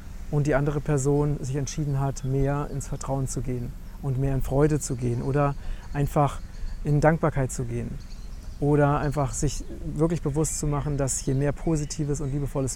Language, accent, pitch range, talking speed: German, German, 115-150 Hz, 175 wpm